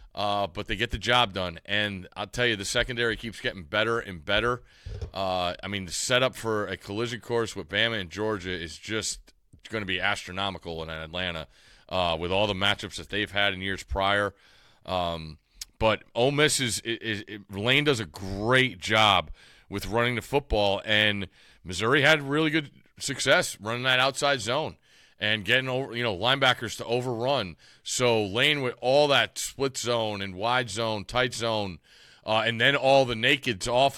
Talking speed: 180 wpm